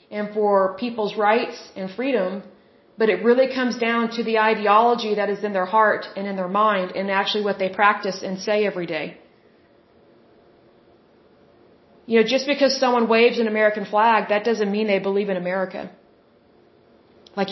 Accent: American